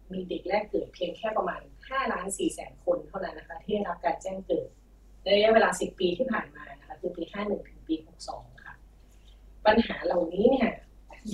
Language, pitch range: Thai, 180-240 Hz